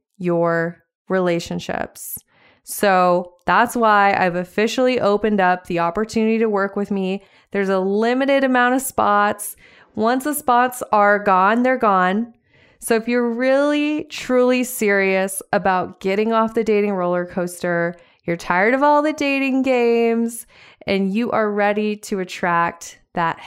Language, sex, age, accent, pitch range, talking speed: English, female, 20-39, American, 185-230 Hz, 140 wpm